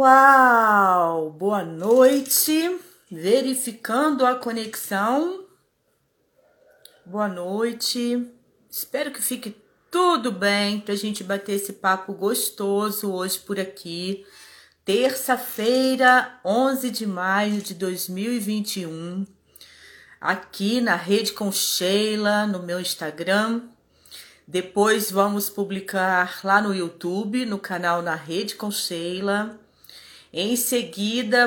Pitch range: 185-235 Hz